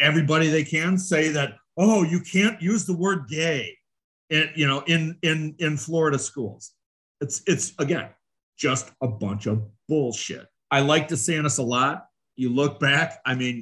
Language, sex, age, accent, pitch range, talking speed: English, male, 40-59, American, 115-155 Hz, 170 wpm